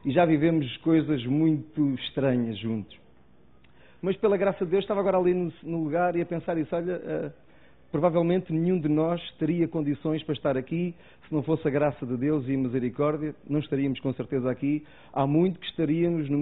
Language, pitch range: Portuguese, 120-165 Hz